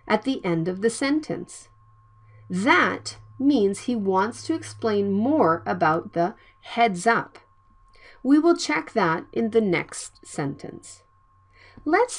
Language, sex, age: Korean, female, 40-59